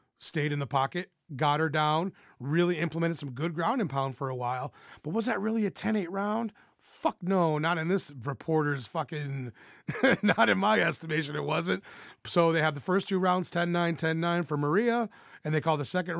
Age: 30-49